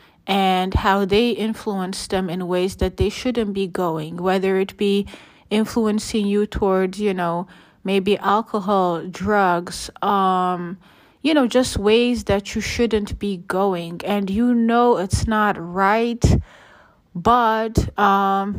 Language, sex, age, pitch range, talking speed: English, female, 30-49, 185-215 Hz, 130 wpm